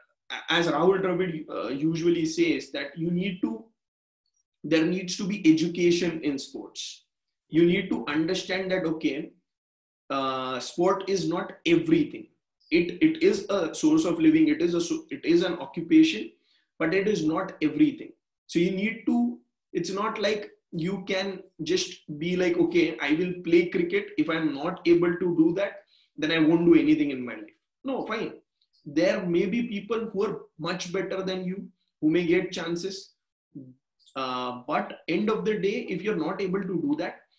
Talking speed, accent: 175 wpm, Indian